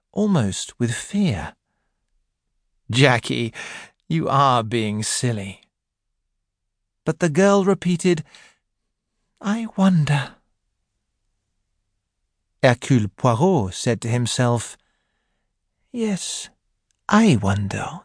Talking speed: 75 wpm